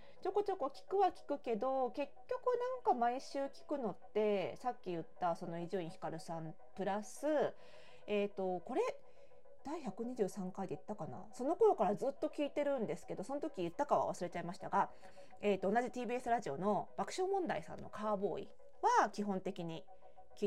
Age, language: 40-59, Japanese